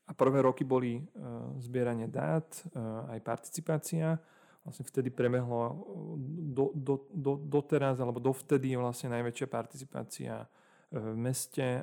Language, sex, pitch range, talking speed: Slovak, male, 115-135 Hz, 130 wpm